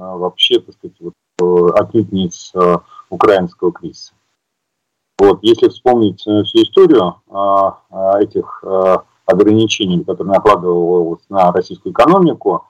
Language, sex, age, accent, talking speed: Russian, male, 30-49, native, 95 wpm